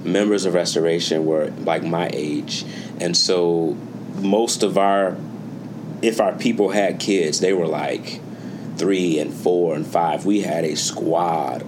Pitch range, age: 80-95 Hz, 30-49